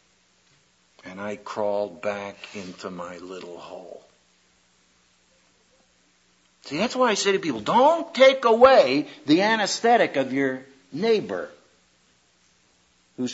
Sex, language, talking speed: male, English, 110 wpm